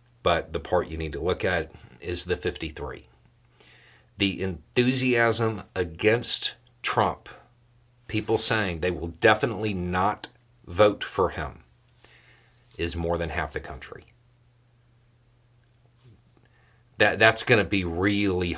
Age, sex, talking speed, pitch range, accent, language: 40-59, male, 115 wpm, 85-120 Hz, American, English